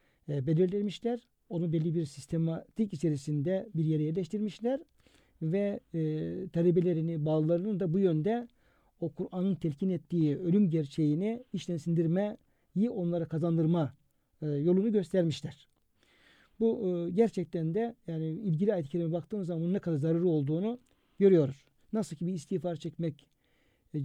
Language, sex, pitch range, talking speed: Turkish, male, 160-185 Hz, 125 wpm